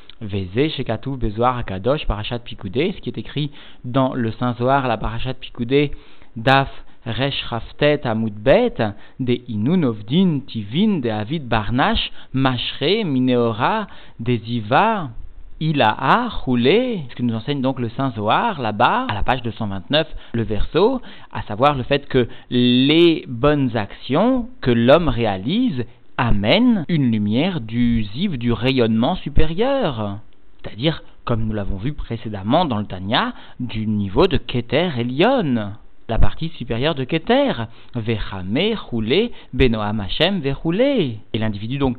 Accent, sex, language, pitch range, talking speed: French, male, French, 110-145 Hz, 130 wpm